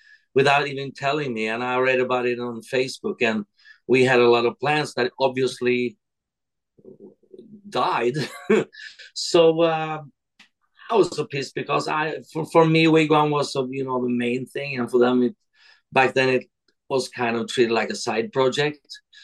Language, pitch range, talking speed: English, 125-160 Hz, 170 wpm